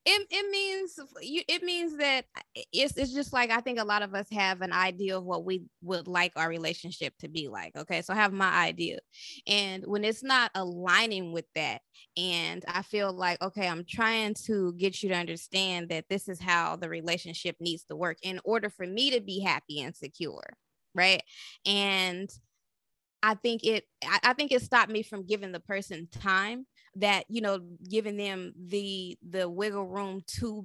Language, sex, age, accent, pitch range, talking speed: English, female, 20-39, American, 185-240 Hz, 190 wpm